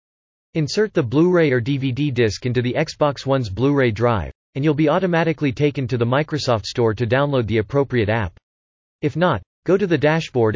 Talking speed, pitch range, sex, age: 180 wpm, 110-150 Hz, male, 40-59